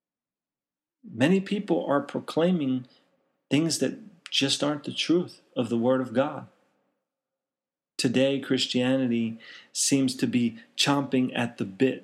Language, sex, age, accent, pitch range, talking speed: English, male, 40-59, American, 120-155 Hz, 120 wpm